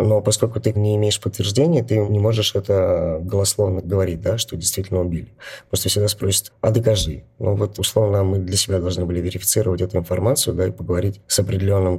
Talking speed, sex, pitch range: 175 wpm, male, 90-110 Hz